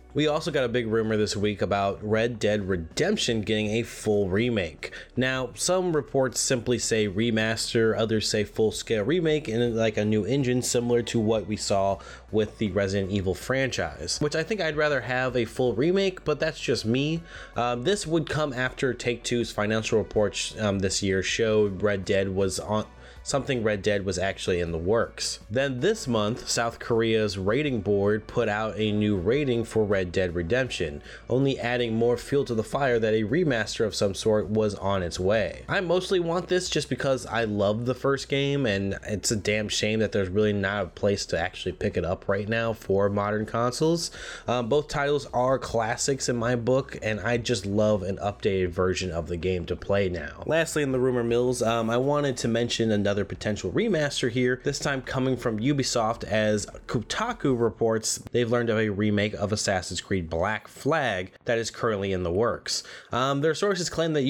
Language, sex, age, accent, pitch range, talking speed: English, male, 20-39, American, 105-130 Hz, 195 wpm